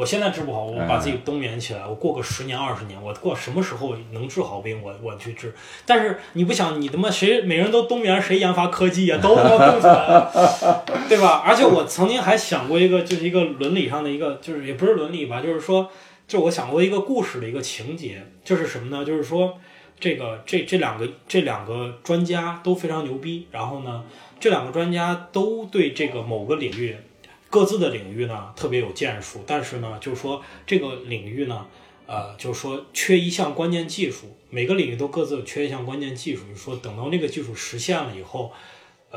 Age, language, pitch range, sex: 20-39, Chinese, 120-185 Hz, male